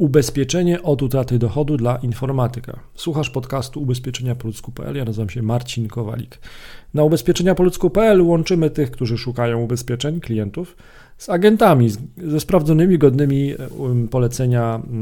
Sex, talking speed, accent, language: male, 115 wpm, native, Polish